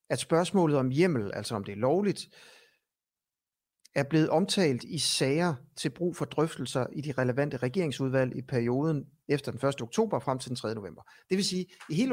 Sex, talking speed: male, 195 wpm